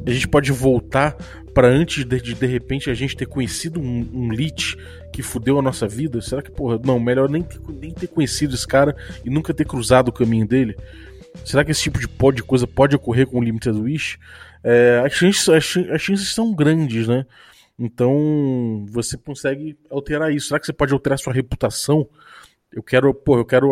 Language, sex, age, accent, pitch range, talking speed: Portuguese, male, 20-39, Brazilian, 125-160 Hz, 185 wpm